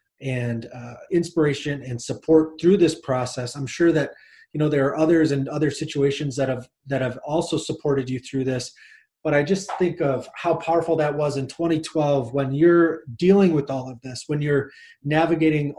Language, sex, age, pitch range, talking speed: English, male, 30-49, 140-170 Hz, 185 wpm